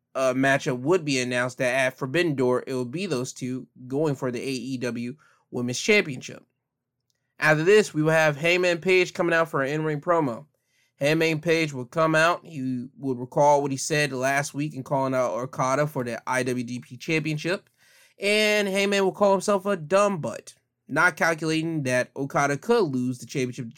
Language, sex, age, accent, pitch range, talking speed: English, male, 20-39, American, 130-170 Hz, 180 wpm